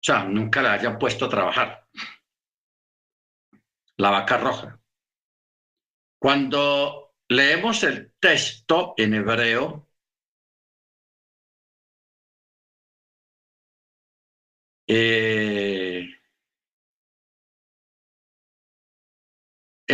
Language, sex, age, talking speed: Spanish, male, 60-79, 55 wpm